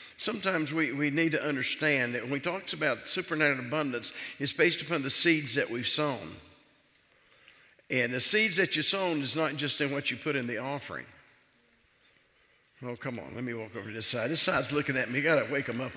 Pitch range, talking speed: 130-165 Hz, 220 wpm